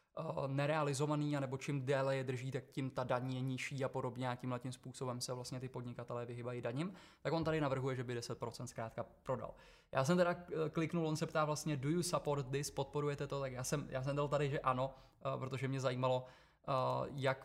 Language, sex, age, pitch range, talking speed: Czech, male, 20-39, 130-155 Hz, 205 wpm